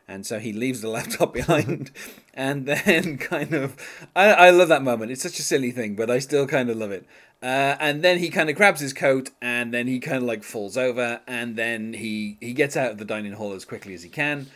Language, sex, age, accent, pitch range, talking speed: English, male, 30-49, British, 110-150 Hz, 245 wpm